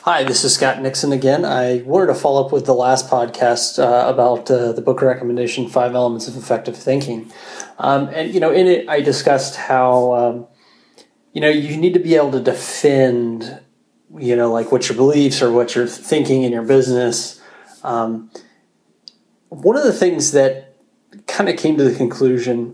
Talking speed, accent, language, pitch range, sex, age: 185 wpm, American, English, 120-140 Hz, male, 30-49